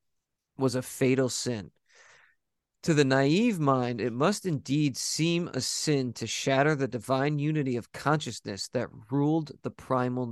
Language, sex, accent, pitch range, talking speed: English, male, American, 120-150 Hz, 145 wpm